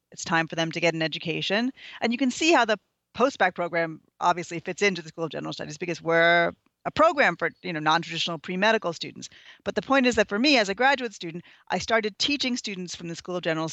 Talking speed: 235 wpm